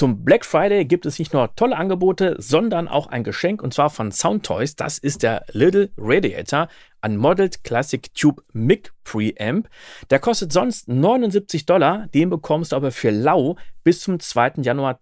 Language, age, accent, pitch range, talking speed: German, 40-59, German, 120-170 Hz, 170 wpm